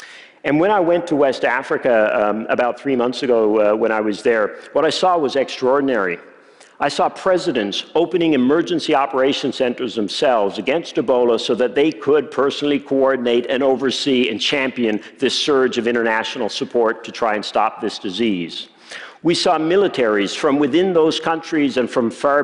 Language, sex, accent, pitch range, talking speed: Russian, male, American, 120-160 Hz, 170 wpm